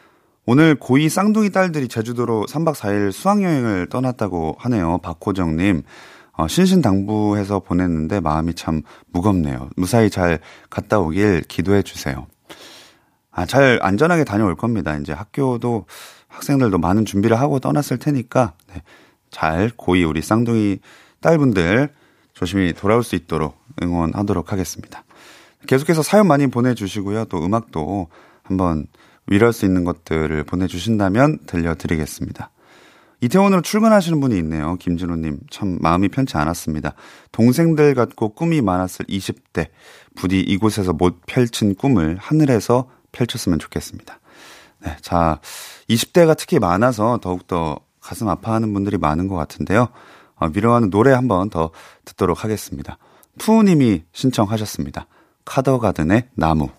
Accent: native